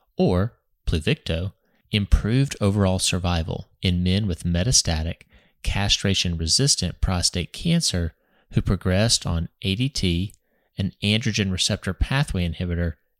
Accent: American